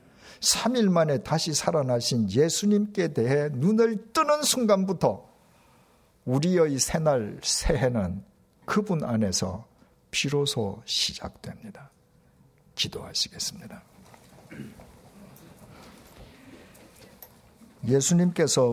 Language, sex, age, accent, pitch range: Korean, male, 50-69, native, 105-155 Hz